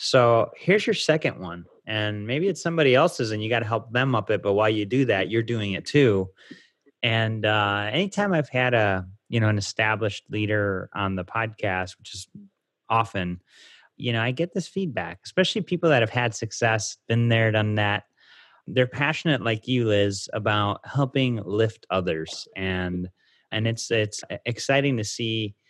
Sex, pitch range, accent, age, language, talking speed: male, 100-125 Hz, American, 30-49, English, 180 wpm